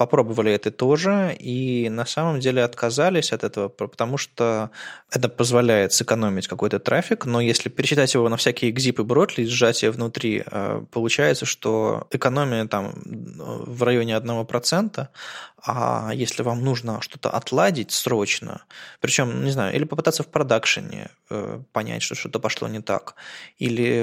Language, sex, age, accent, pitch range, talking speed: Russian, male, 20-39, native, 110-130 Hz, 140 wpm